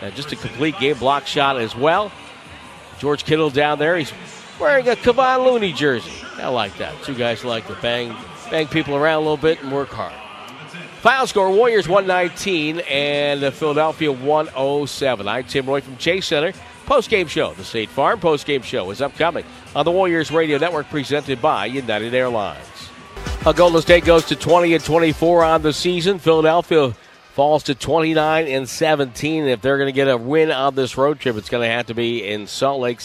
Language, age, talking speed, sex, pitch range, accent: English, 50-69, 190 wpm, male, 120-160 Hz, American